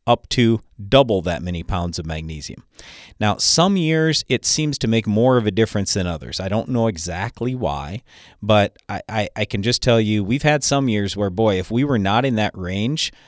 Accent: American